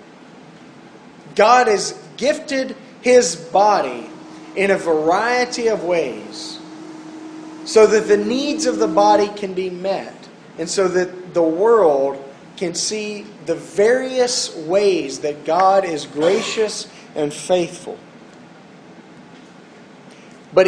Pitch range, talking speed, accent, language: 180-225 Hz, 105 wpm, American, English